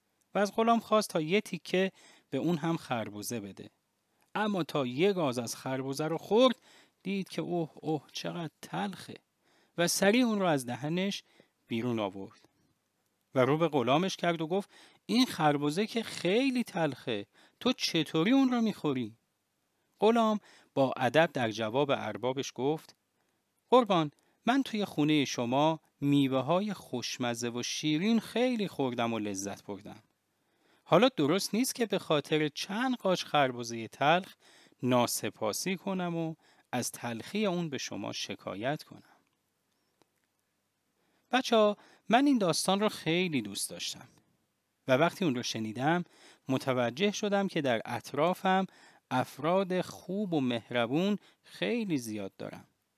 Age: 40-59